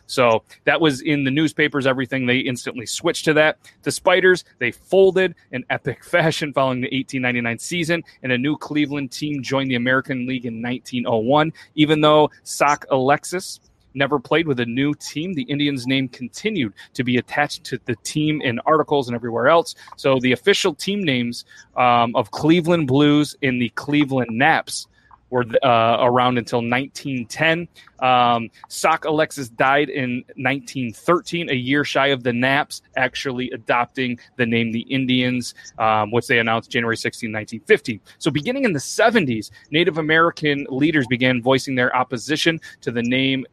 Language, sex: English, male